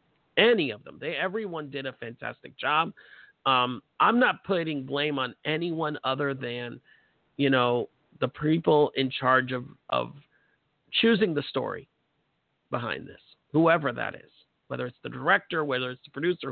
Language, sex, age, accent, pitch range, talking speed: English, male, 50-69, American, 130-160 Hz, 155 wpm